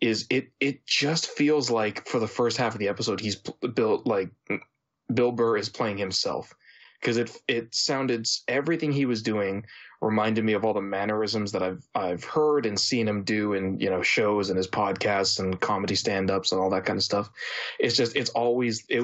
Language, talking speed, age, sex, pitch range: English, 200 wpm, 20-39, male, 100-120 Hz